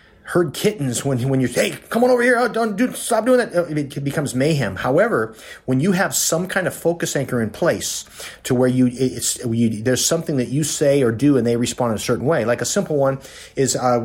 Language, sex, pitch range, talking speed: English, male, 115-145 Hz, 240 wpm